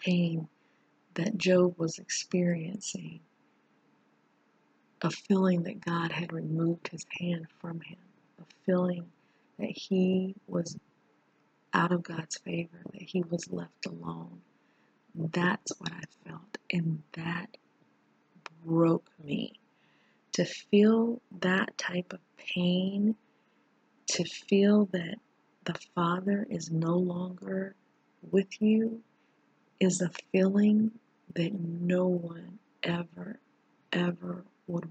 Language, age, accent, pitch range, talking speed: English, 40-59, American, 170-195 Hz, 105 wpm